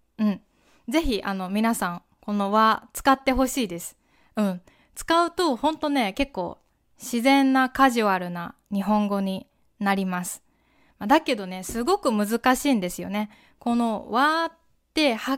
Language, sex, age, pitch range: Japanese, female, 20-39, 205-290 Hz